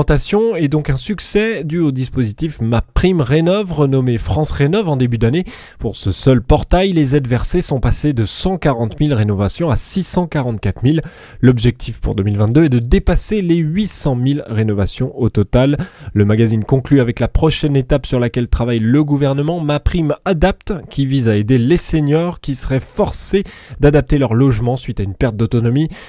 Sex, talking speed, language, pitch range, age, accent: male, 170 wpm, French, 115-160 Hz, 20-39, French